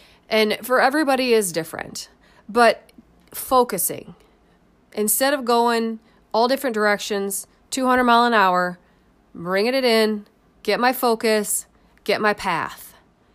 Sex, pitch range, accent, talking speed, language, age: female, 205-250 Hz, American, 115 wpm, English, 30-49